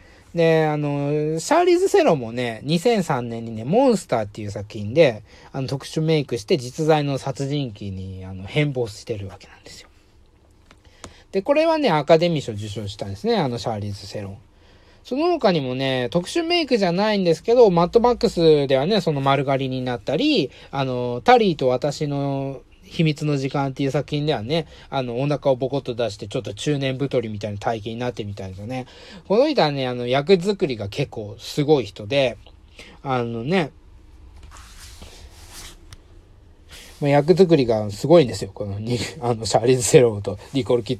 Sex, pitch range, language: male, 105-160 Hz, Japanese